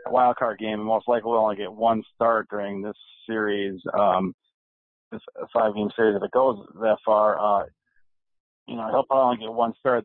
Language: English